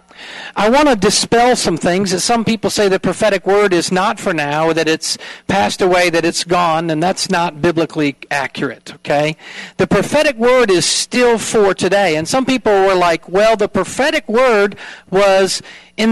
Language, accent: English, American